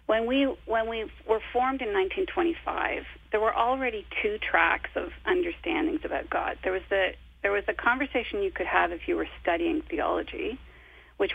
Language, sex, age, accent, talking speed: English, female, 40-59, American, 170 wpm